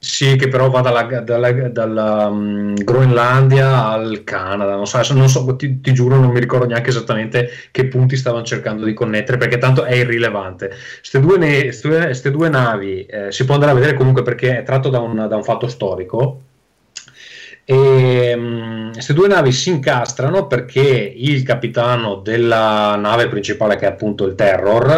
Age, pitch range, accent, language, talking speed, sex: 30-49, 110-135 Hz, native, Italian, 170 wpm, male